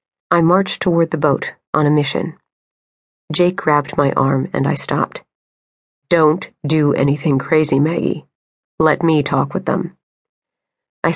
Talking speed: 140 wpm